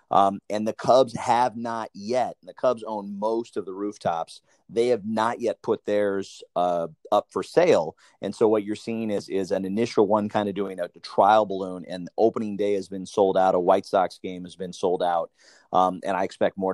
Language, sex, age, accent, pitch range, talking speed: English, male, 30-49, American, 90-110 Hz, 220 wpm